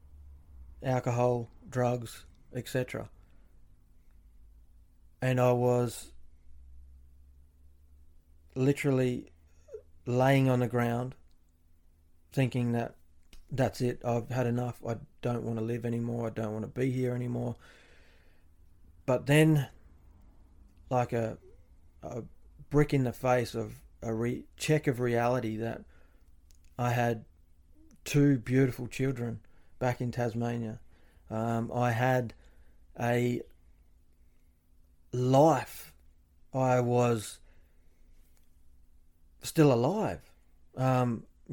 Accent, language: Australian, English